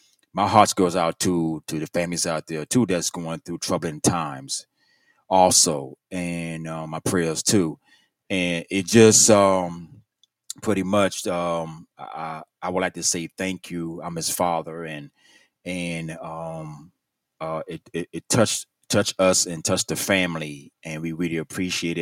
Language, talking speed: English, 160 wpm